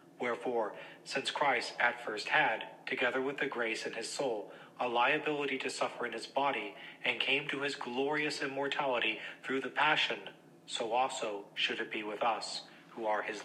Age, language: 40-59, English